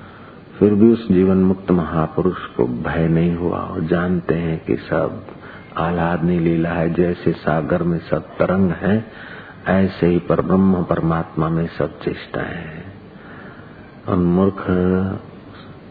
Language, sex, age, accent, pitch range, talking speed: Hindi, male, 50-69, native, 85-95 Hz, 130 wpm